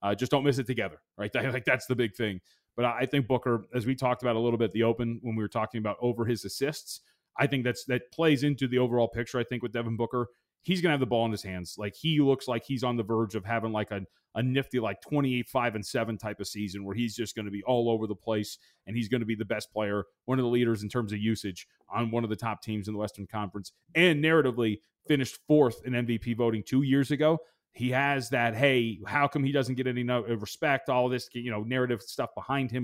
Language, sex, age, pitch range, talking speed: English, male, 30-49, 110-130 Hz, 265 wpm